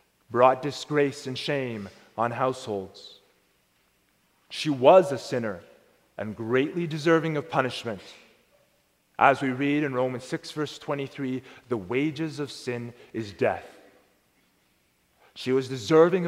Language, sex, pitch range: English, male, 130-160 Hz